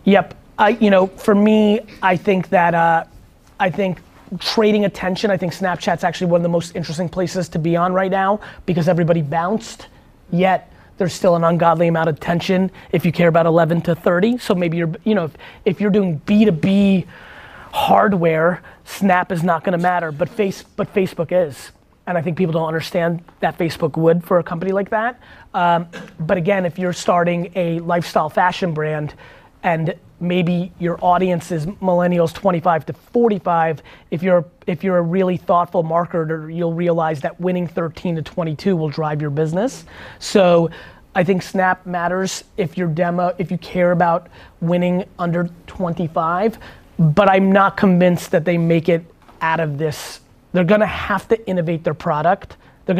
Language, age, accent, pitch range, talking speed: English, 20-39, American, 170-190 Hz, 175 wpm